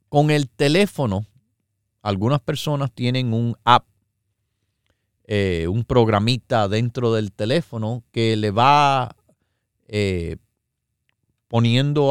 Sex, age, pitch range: male, 40-59, 100-125 Hz